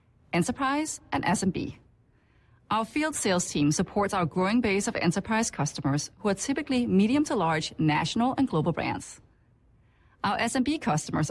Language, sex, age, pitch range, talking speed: English, female, 30-49, 160-250 Hz, 145 wpm